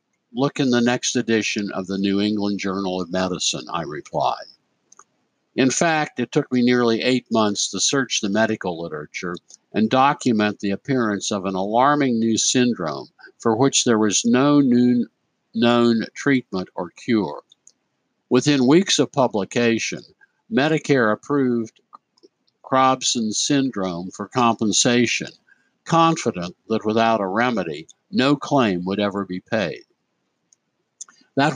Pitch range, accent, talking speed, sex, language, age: 105-130 Hz, American, 125 wpm, male, English, 60-79